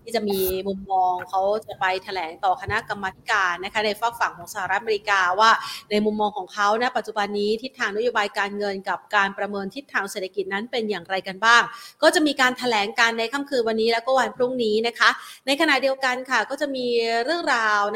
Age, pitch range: 30-49, 195-235 Hz